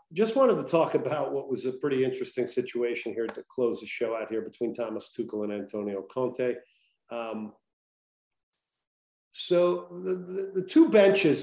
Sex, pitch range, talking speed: male, 115-140 Hz, 165 wpm